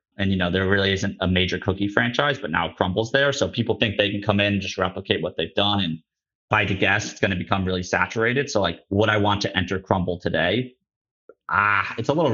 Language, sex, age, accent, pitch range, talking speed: English, male, 30-49, American, 95-110 Hz, 245 wpm